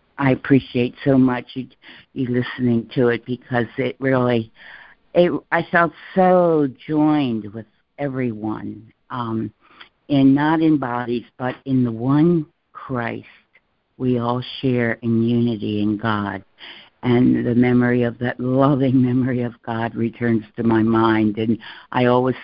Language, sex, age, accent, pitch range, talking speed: English, female, 60-79, American, 115-130 Hz, 140 wpm